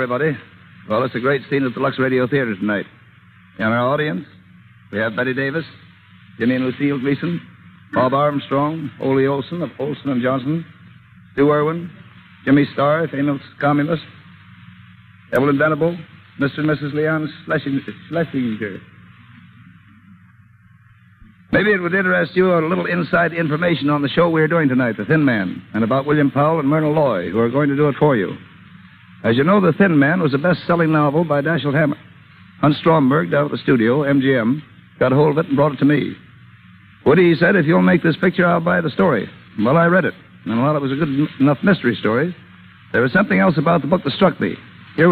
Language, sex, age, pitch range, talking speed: English, male, 60-79, 130-165 Hz, 190 wpm